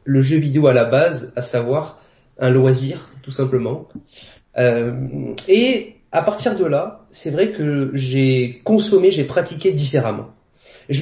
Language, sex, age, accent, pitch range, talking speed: French, male, 30-49, French, 130-185 Hz, 145 wpm